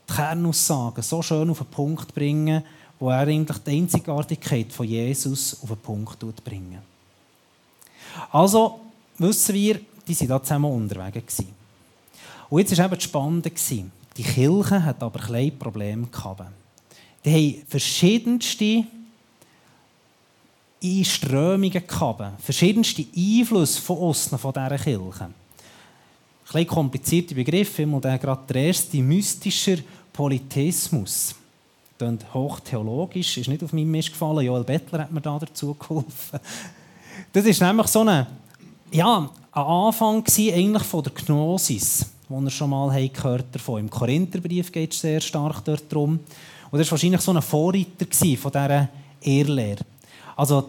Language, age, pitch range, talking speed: German, 30-49, 130-170 Hz, 140 wpm